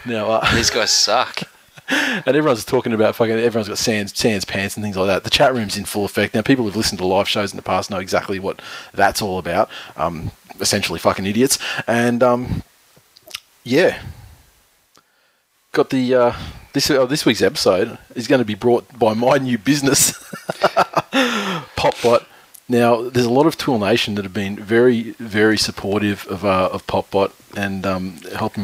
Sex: male